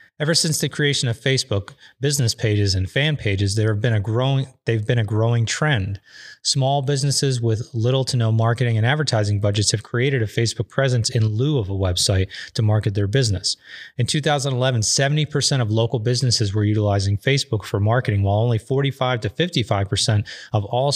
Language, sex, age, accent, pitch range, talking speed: English, male, 30-49, American, 110-130 Hz, 180 wpm